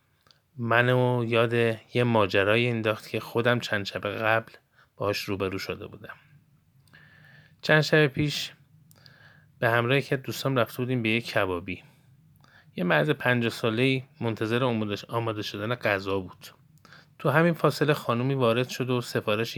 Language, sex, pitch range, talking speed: Persian, male, 115-145 Hz, 130 wpm